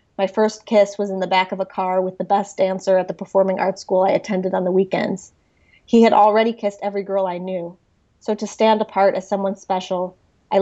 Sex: female